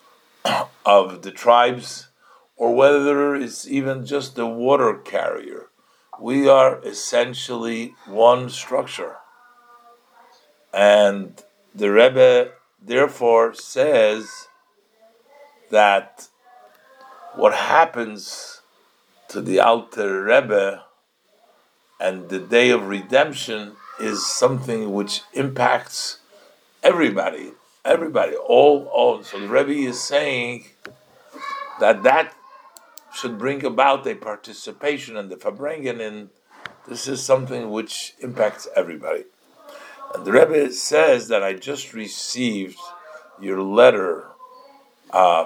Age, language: 60-79, English